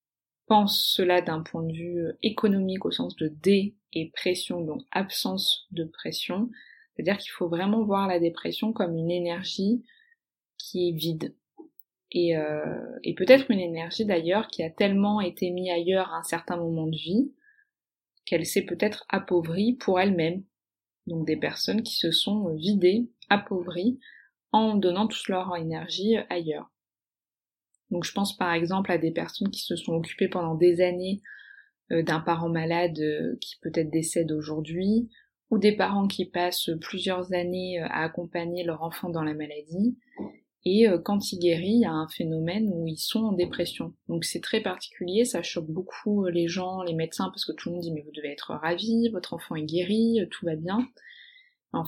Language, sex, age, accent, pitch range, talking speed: French, female, 20-39, French, 165-210 Hz, 170 wpm